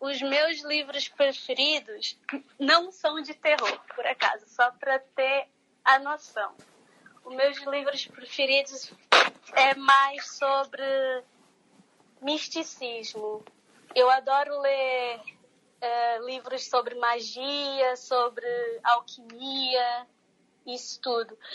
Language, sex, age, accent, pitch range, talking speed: Portuguese, female, 20-39, Brazilian, 240-280 Hz, 90 wpm